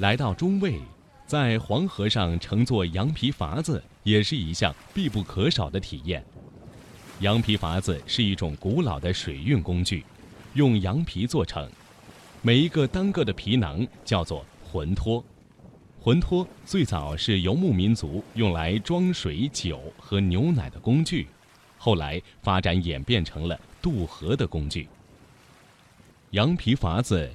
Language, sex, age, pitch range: Chinese, male, 30-49, 90-120 Hz